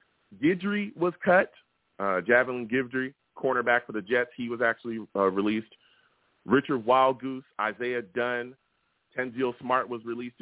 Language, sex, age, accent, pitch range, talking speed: English, male, 30-49, American, 105-125 Hz, 140 wpm